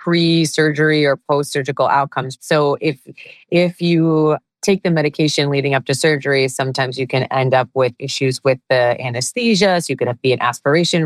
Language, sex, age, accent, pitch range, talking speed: English, female, 30-49, American, 130-165 Hz, 175 wpm